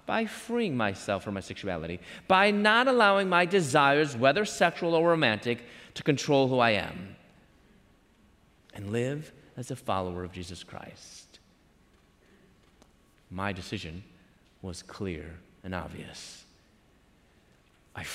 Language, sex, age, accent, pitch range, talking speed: English, male, 30-49, American, 125-215 Hz, 115 wpm